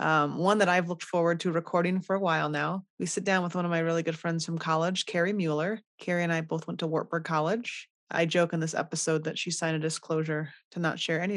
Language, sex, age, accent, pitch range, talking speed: English, female, 30-49, American, 165-195 Hz, 255 wpm